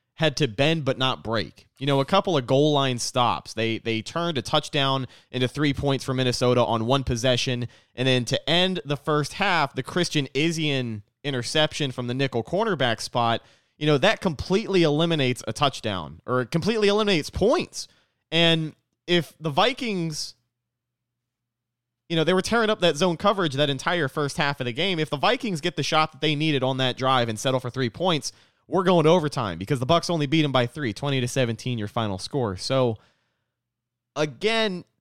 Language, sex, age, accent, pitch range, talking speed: English, male, 20-39, American, 120-160 Hz, 190 wpm